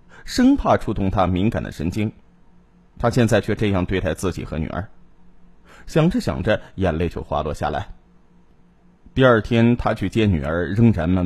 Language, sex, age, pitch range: Chinese, male, 20-39, 90-145 Hz